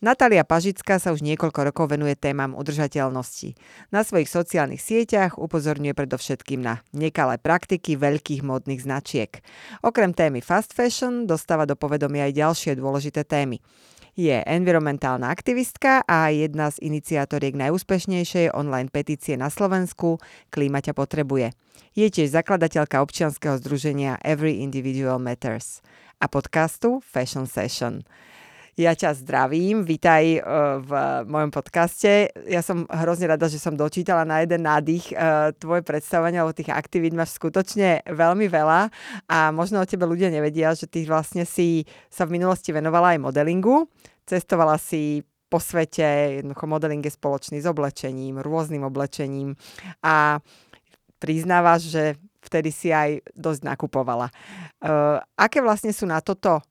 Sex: female